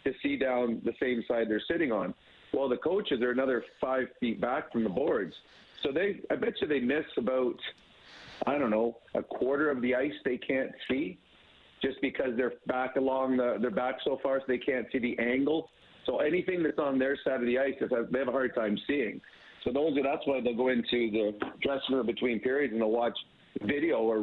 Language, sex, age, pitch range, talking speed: English, male, 50-69, 120-135 Hz, 220 wpm